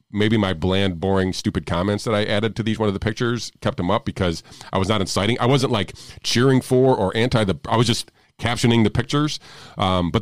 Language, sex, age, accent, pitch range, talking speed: English, male, 40-59, American, 85-110 Hz, 230 wpm